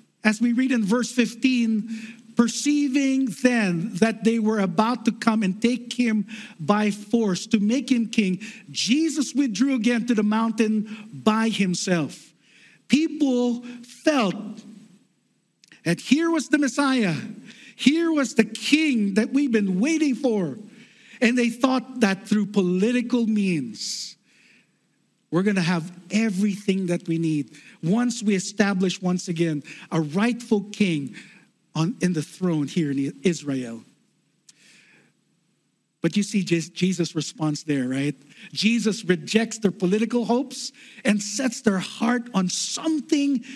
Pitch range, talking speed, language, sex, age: 185-240 Hz, 130 wpm, English, male, 50-69